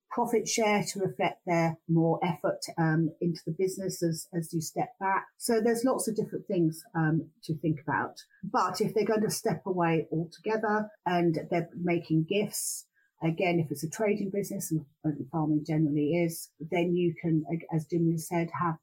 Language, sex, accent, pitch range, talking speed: English, female, British, 155-185 Hz, 175 wpm